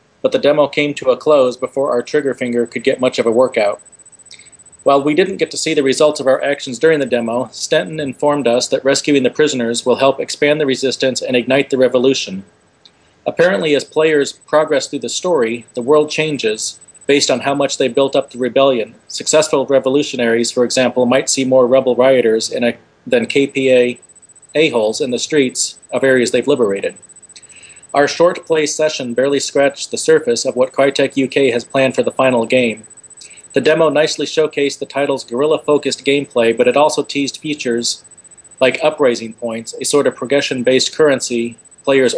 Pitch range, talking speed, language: 120-145 Hz, 180 wpm, English